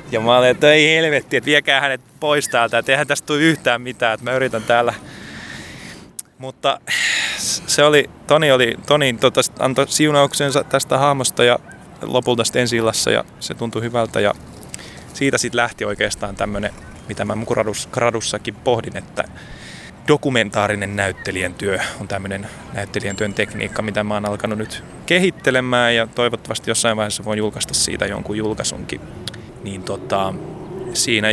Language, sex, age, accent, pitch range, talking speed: Finnish, male, 20-39, native, 105-130 Hz, 140 wpm